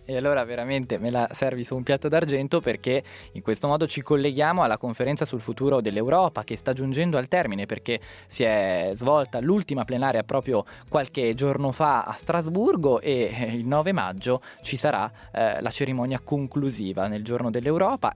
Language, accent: Italian, native